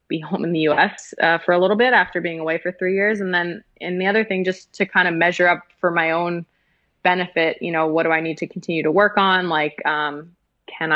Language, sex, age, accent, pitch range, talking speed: English, female, 20-39, American, 160-185 Hz, 250 wpm